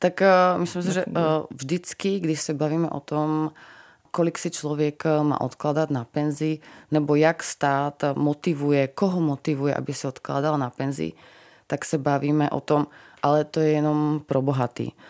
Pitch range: 140-150 Hz